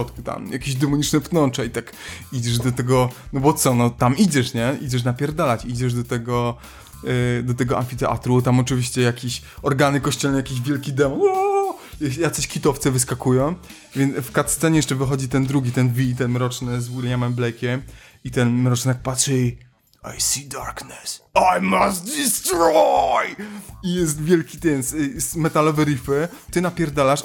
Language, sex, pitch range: Polish, male, 130-180 Hz